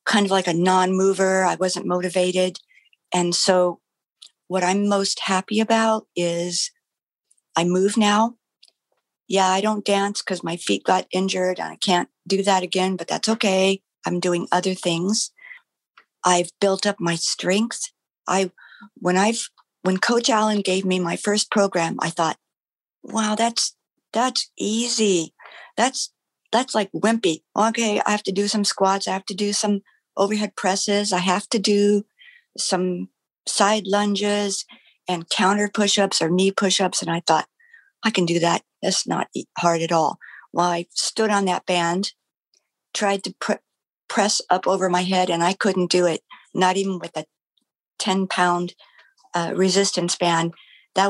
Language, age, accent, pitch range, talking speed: English, 50-69, American, 180-205 Hz, 155 wpm